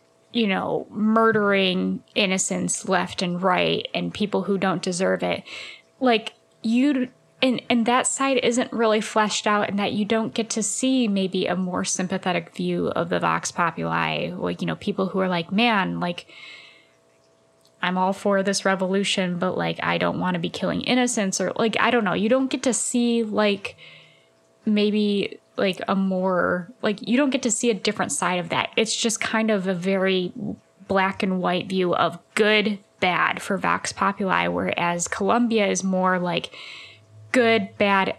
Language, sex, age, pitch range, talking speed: English, female, 10-29, 175-220 Hz, 175 wpm